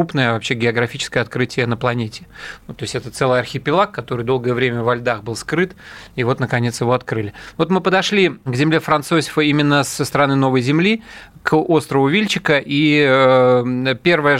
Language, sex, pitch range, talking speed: Russian, male, 125-150 Hz, 165 wpm